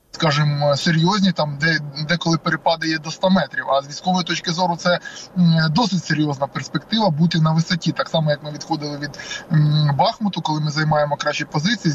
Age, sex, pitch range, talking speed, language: 20-39, male, 155-180 Hz, 175 wpm, Ukrainian